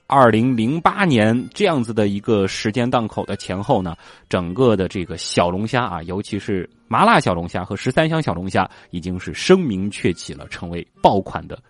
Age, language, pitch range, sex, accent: 20-39, Chinese, 95-160 Hz, male, native